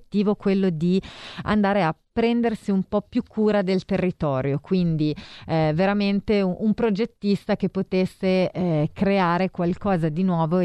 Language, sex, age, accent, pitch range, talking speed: Italian, female, 30-49, native, 155-190 Hz, 135 wpm